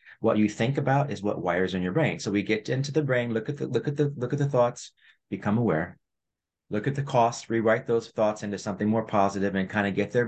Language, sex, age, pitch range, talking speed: English, male, 30-49, 95-130 Hz, 255 wpm